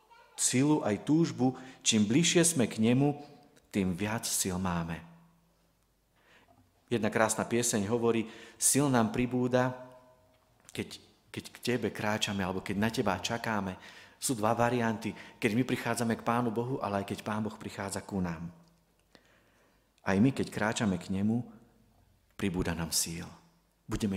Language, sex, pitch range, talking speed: Czech, male, 100-130 Hz, 140 wpm